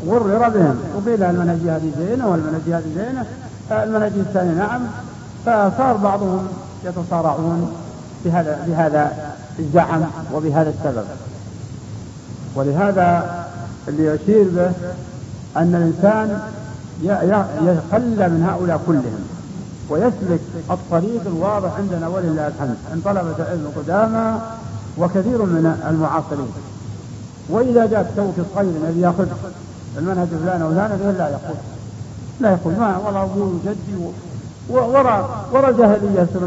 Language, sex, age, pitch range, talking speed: Arabic, male, 60-79, 150-200 Hz, 105 wpm